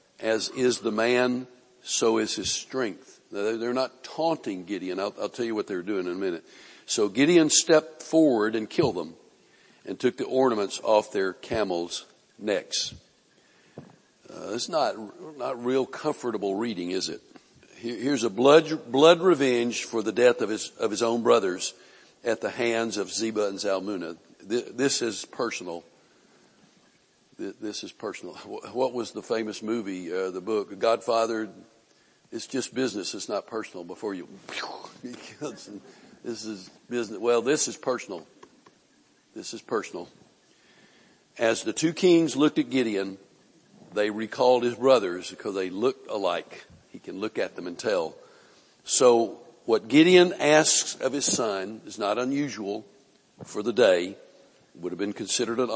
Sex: male